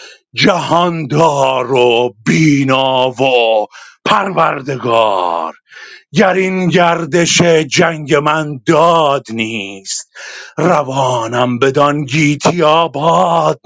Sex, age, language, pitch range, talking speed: male, 50-69, Persian, 135-185 Hz, 70 wpm